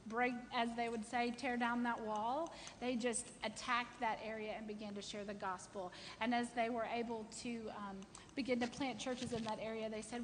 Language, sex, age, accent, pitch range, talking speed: English, female, 30-49, American, 215-255 Hz, 210 wpm